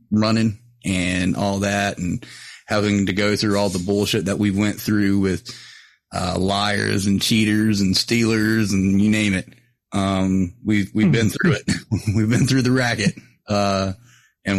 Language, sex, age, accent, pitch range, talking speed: English, male, 30-49, American, 100-120 Hz, 165 wpm